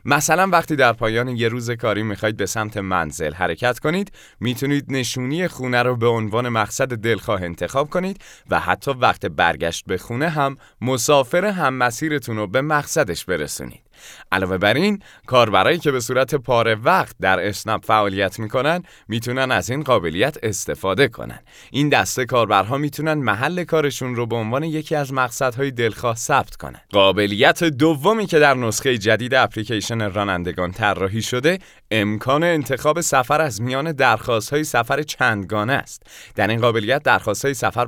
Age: 30-49